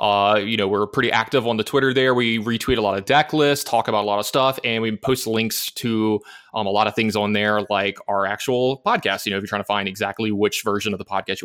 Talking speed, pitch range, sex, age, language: 280 wpm, 105-130 Hz, male, 20-39, English